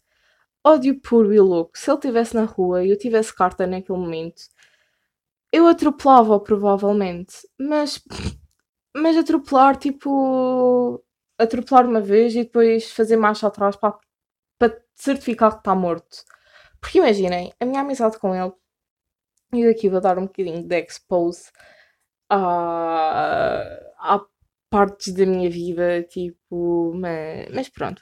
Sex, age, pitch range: female, 20-39, 175-230 Hz